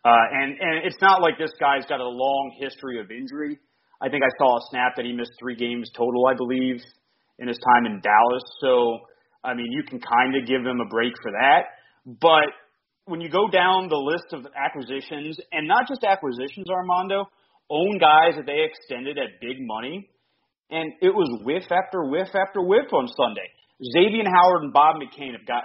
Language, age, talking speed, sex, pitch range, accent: English, 30-49, 200 wpm, male, 130-195 Hz, American